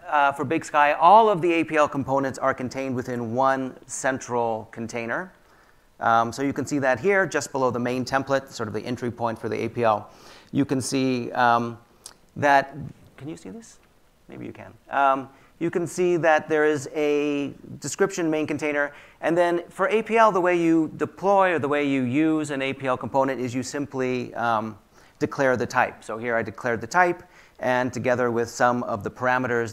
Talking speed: 190 wpm